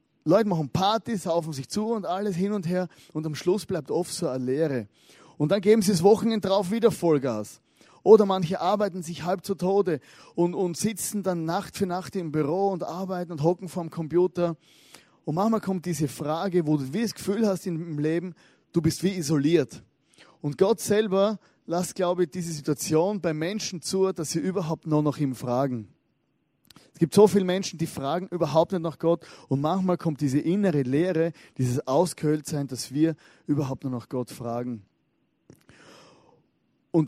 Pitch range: 150-185 Hz